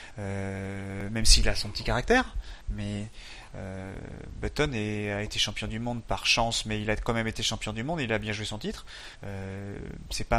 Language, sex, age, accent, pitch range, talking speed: French, male, 30-49, French, 110-130 Hz, 210 wpm